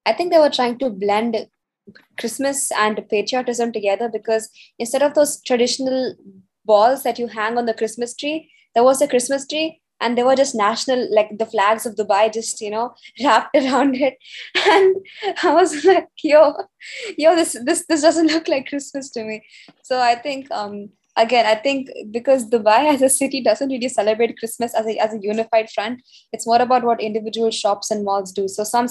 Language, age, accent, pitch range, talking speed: English, 20-39, Indian, 210-260 Hz, 195 wpm